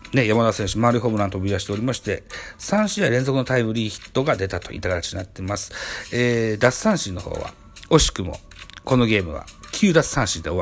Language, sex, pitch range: Japanese, male, 95-140 Hz